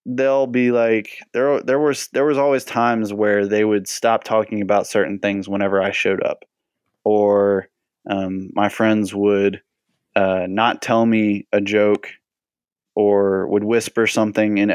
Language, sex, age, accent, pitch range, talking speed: English, male, 20-39, American, 100-120 Hz, 155 wpm